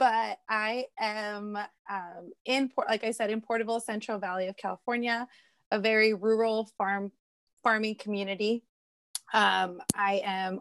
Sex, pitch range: female, 195-230 Hz